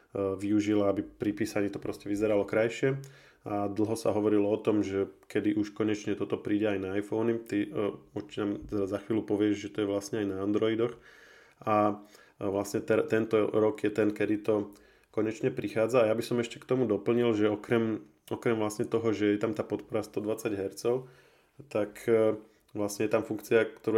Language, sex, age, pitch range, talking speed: Slovak, male, 20-39, 105-110 Hz, 190 wpm